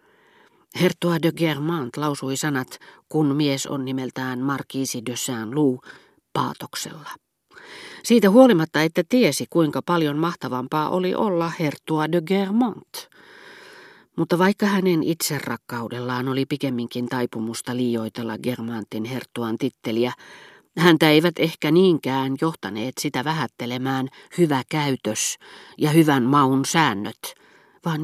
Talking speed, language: 105 wpm, Finnish